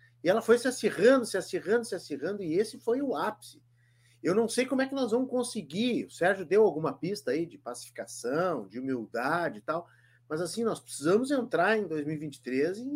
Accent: Brazilian